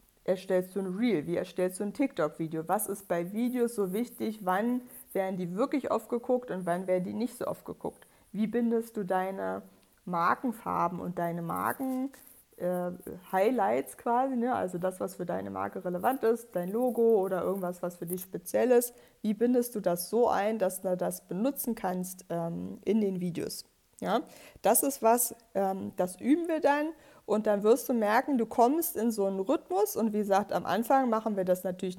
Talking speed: 190 wpm